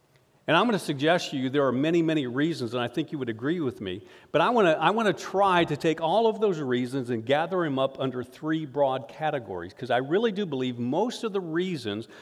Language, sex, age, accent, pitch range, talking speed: English, male, 50-69, American, 130-165 Hz, 250 wpm